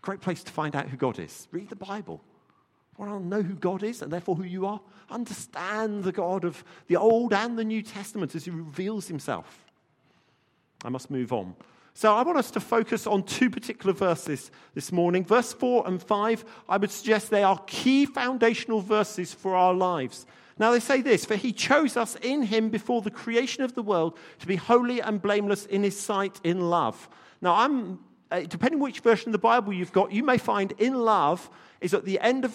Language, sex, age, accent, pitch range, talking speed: English, male, 50-69, British, 180-230 Hz, 210 wpm